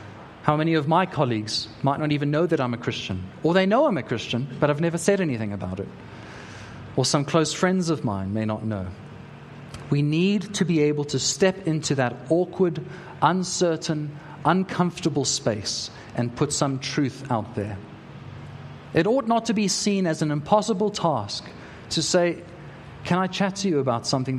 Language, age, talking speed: English, 30-49, 180 wpm